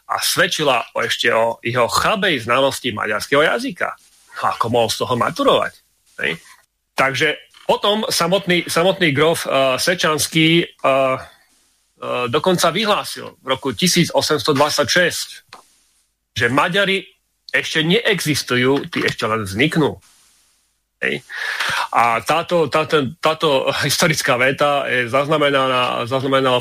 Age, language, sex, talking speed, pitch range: 30-49, Slovak, male, 110 wpm, 125-155 Hz